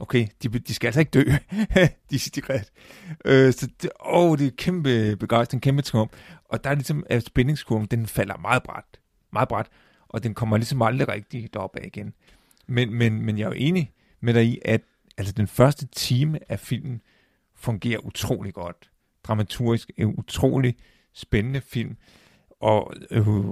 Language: Danish